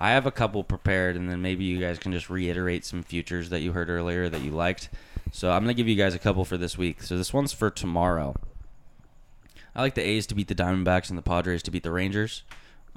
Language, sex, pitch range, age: English, male, 85-100 Hz, 20-39